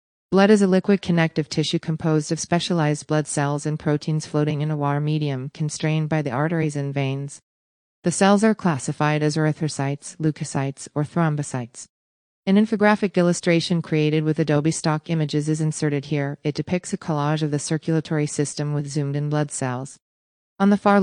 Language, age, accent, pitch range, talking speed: Portuguese, 40-59, American, 145-165 Hz, 170 wpm